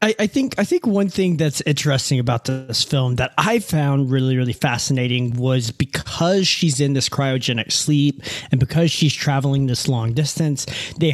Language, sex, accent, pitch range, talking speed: English, male, American, 130-170 Hz, 170 wpm